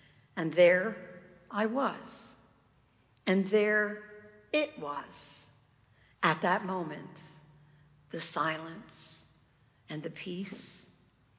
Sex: female